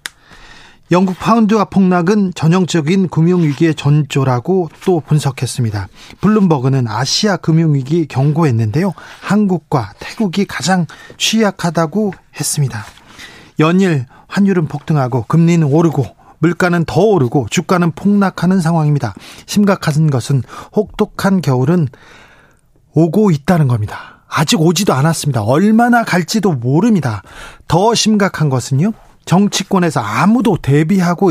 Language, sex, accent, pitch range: Korean, male, native, 145-195 Hz